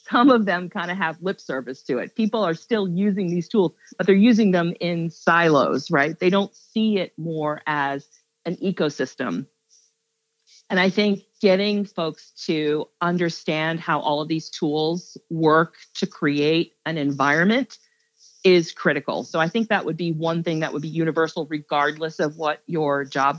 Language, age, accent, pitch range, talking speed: English, 40-59, American, 150-200 Hz, 170 wpm